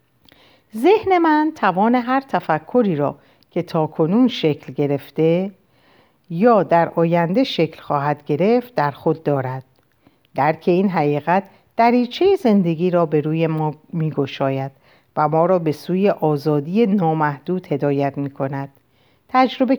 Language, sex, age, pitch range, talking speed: Persian, female, 50-69, 150-235 Hz, 125 wpm